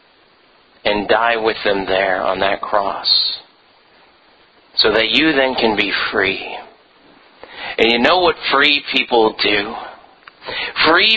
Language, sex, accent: English, male, American